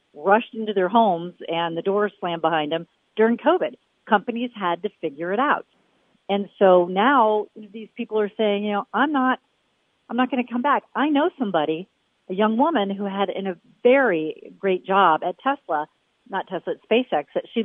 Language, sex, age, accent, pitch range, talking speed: English, female, 40-59, American, 180-235 Hz, 190 wpm